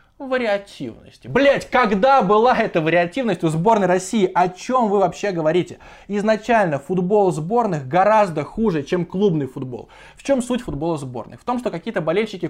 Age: 20-39